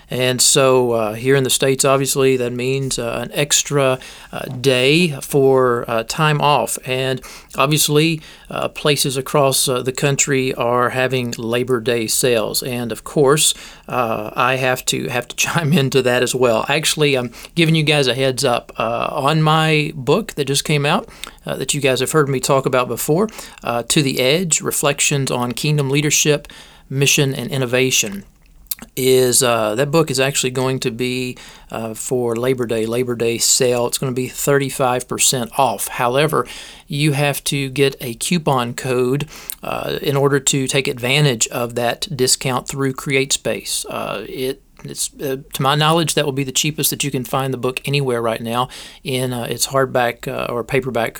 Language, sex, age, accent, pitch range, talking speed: English, male, 40-59, American, 125-145 Hz, 180 wpm